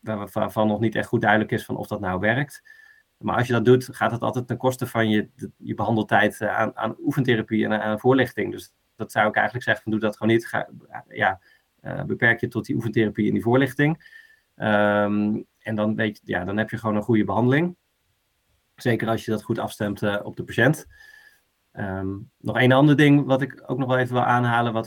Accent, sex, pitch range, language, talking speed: Dutch, male, 105-130 Hz, Dutch, 220 wpm